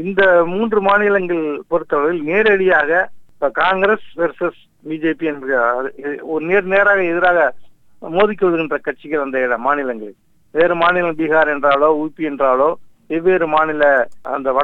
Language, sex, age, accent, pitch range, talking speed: Tamil, male, 50-69, native, 145-195 Hz, 75 wpm